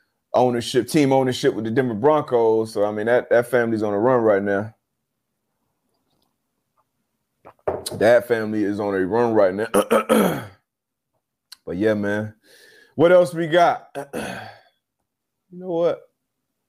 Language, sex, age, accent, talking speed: English, male, 30-49, American, 130 wpm